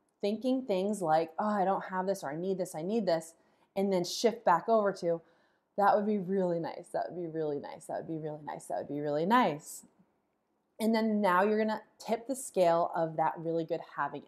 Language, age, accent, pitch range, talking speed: English, 20-39, American, 185-255 Hz, 230 wpm